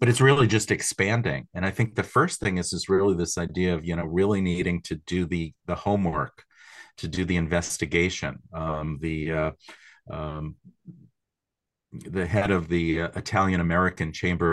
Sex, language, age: male, English, 40-59